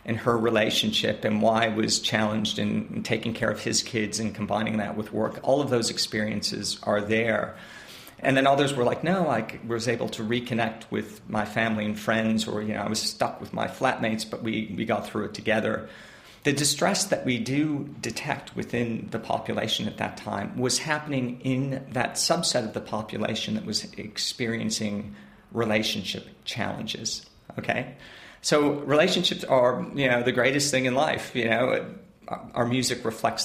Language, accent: English, American